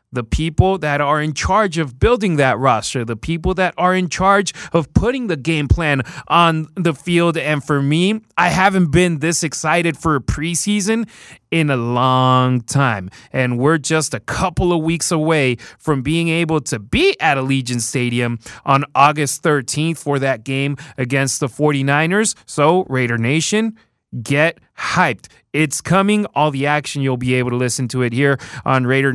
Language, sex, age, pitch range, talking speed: English, male, 30-49, 135-185 Hz, 175 wpm